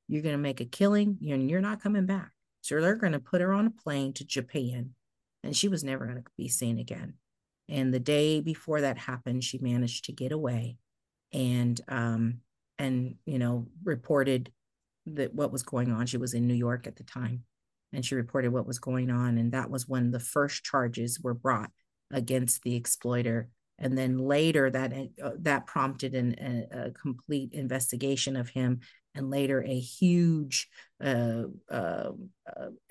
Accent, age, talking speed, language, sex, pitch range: American, 40-59, 175 wpm, English, female, 125-150 Hz